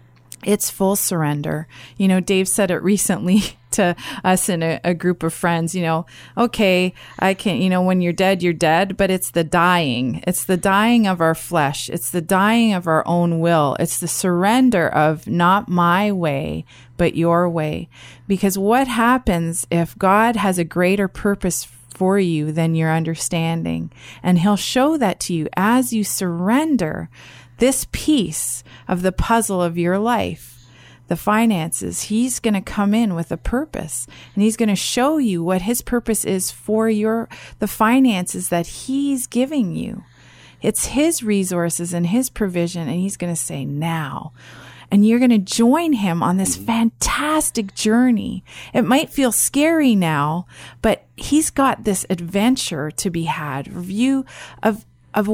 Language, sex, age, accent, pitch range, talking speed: English, female, 30-49, American, 170-225 Hz, 160 wpm